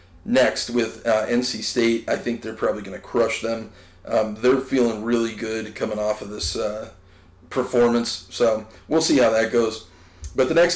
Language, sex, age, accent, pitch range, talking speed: English, male, 40-59, American, 95-145 Hz, 185 wpm